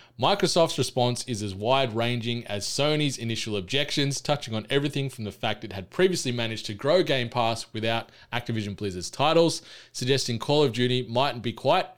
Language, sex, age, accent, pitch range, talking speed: English, male, 20-39, Australian, 110-135 Hz, 170 wpm